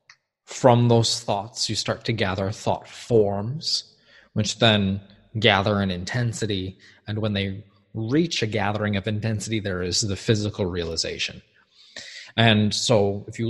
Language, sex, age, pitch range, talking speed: English, male, 20-39, 105-120 Hz, 140 wpm